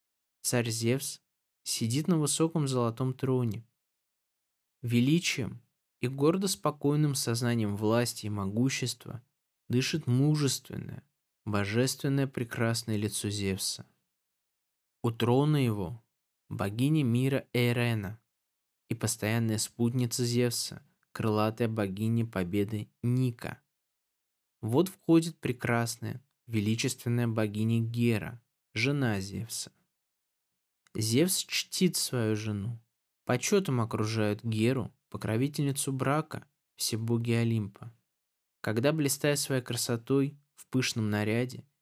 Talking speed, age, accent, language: 90 wpm, 20-39, native, Russian